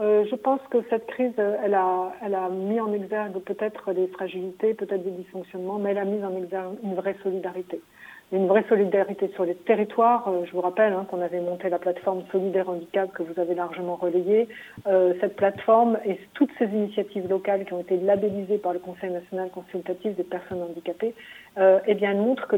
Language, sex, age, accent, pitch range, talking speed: French, female, 50-69, French, 185-225 Hz, 205 wpm